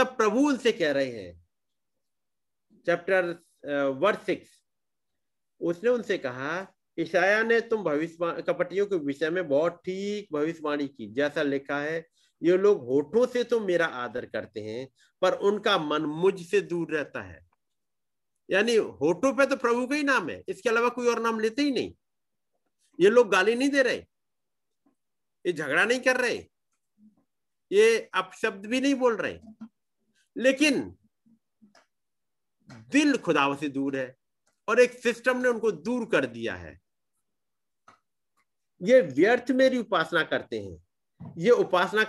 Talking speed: 135 wpm